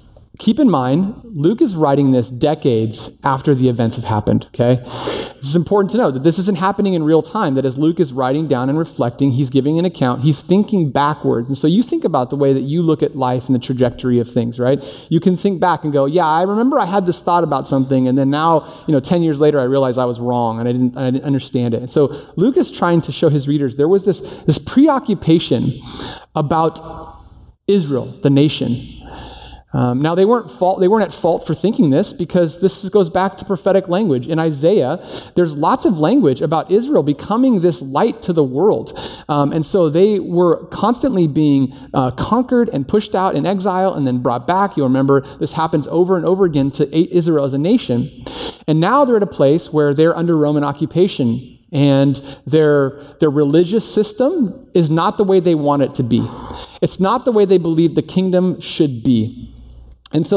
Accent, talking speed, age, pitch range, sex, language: American, 215 wpm, 30-49, 135-190 Hz, male, English